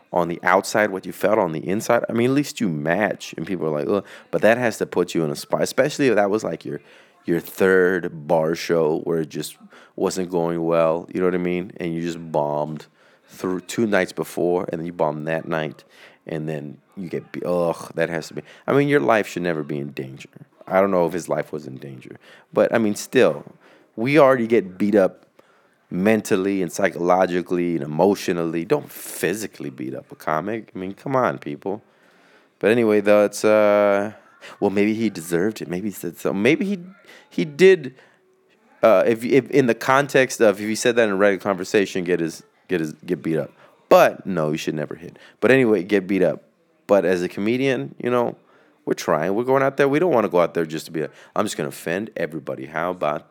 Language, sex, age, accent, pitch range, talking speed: English, male, 30-49, American, 85-110 Hz, 220 wpm